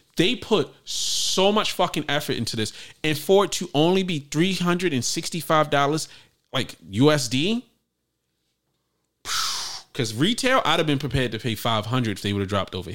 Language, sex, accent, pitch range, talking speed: English, male, American, 125-170 Hz, 150 wpm